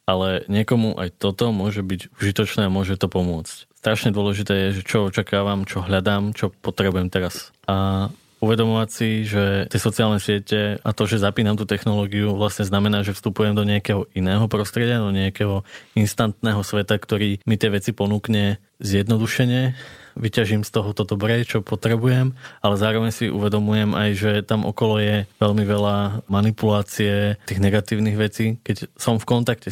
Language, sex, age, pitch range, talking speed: Slovak, male, 20-39, 100-110 Hz, 160 wpm